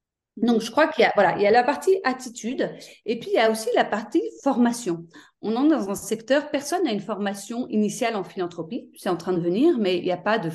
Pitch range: 195-265 Hz